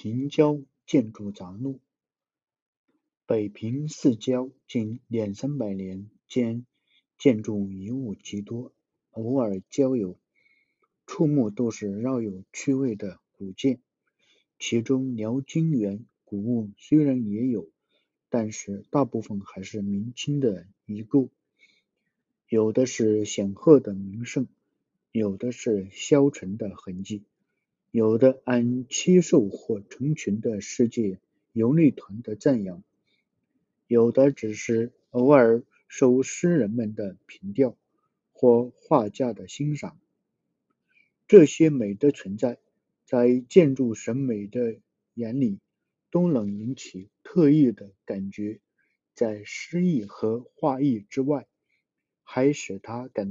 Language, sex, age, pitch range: Chinese, male, 50-69, 105-135 Hz